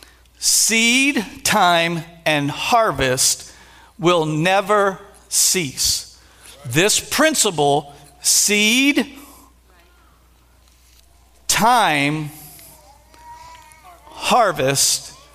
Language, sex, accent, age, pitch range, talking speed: English, male, American, 50-69, 160-225 Hz, 45 wpm